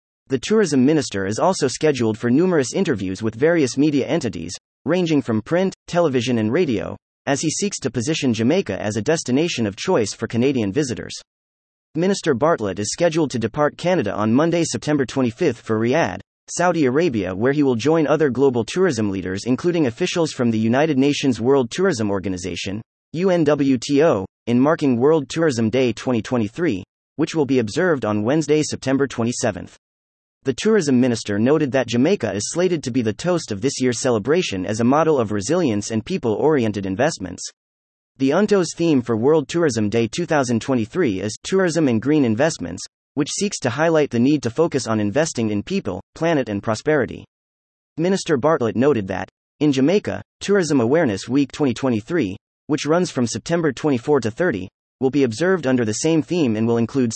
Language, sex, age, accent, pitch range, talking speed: English, male, 30-49, American, 110-155 Hz, 165 wpm